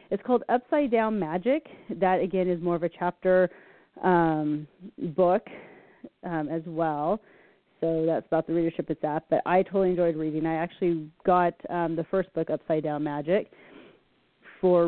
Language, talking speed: English, 160 wpm